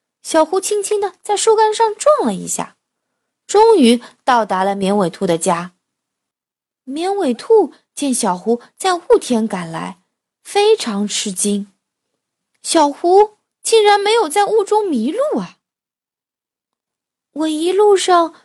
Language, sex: Chinese, female